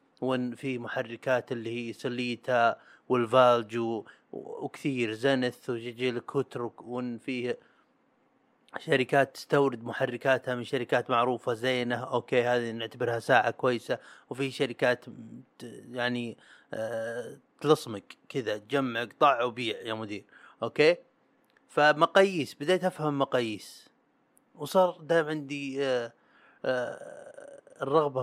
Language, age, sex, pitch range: Arabic, 30-49, male, 115-140 Hz